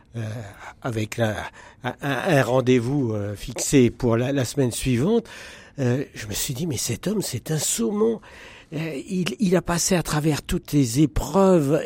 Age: 60-79